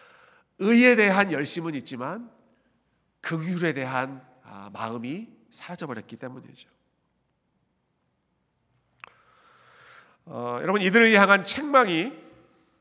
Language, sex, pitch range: Korean, male, 145-185 Hz